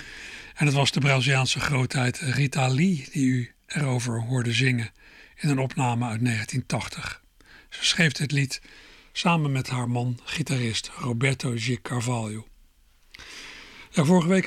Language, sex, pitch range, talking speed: Dutch, male, 130-155 Hz, 135 wpm